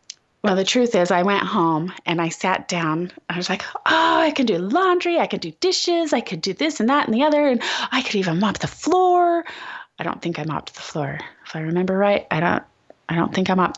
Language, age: English, 30-49